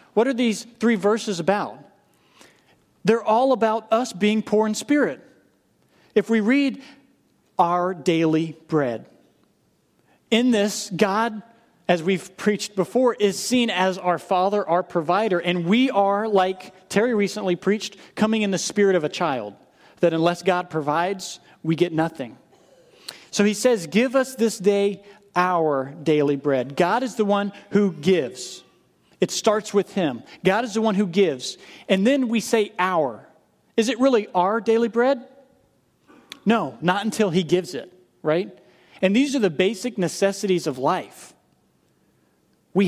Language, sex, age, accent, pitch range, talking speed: English, male, 40-59, American, 170-215 Hz, 150 wpm